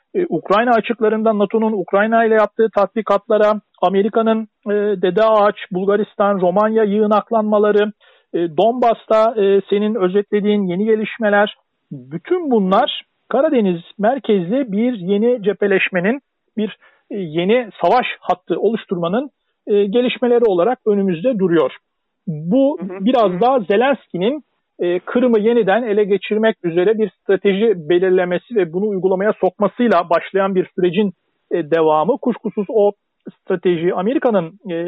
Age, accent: 50-69, native